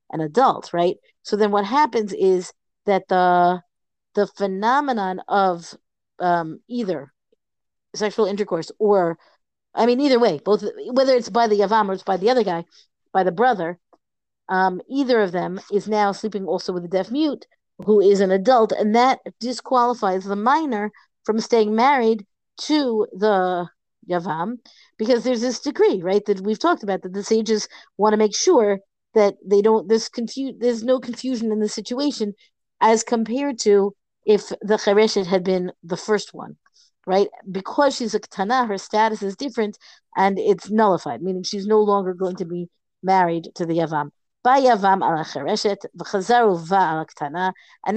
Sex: female